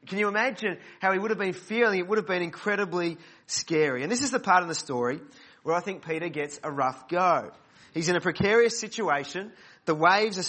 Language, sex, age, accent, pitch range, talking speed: English, male, 30-49, Australian, 165-205 Hz, 225 wpm